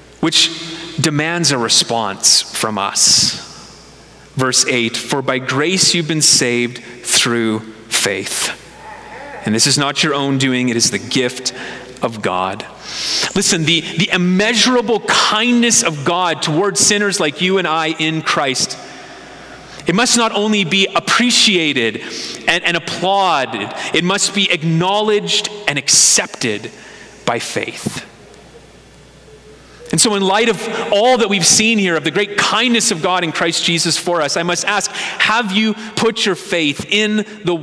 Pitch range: 145-200 Hz